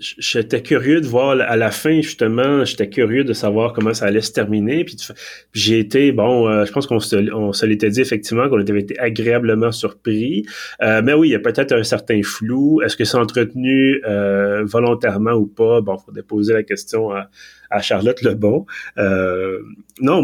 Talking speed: 195 wpm